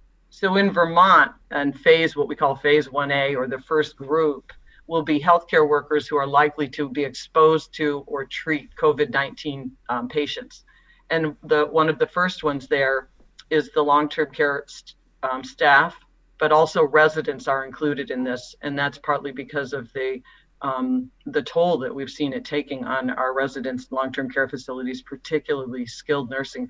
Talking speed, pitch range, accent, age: 160 wpm, 135-155 Hz, American, 50-69